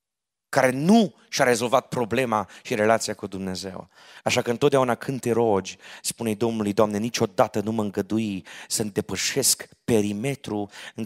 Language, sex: Romanian, male